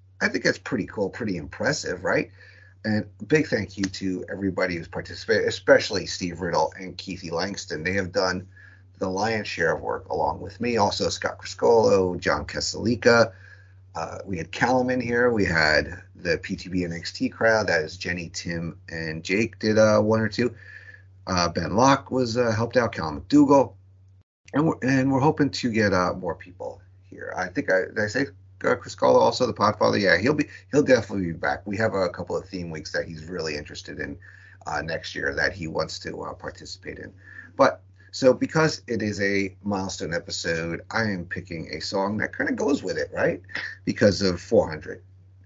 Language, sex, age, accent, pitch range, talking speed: English, male, 30-49, American, 90-110 Hz, 190 wpm